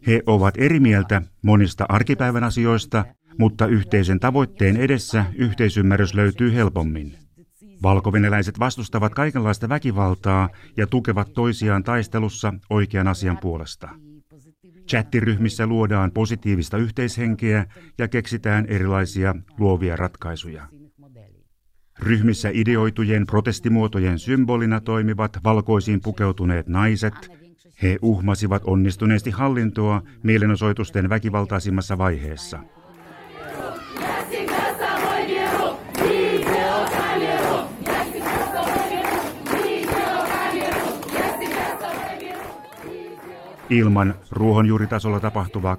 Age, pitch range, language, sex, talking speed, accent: 60-79, 100-130 Hz, Finnish, male, 70 wpm, native